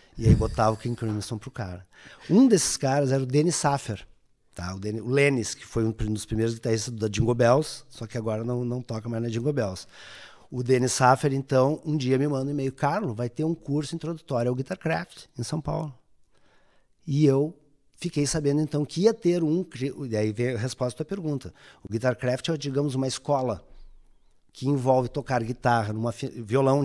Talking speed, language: 200 wpm, Portuguese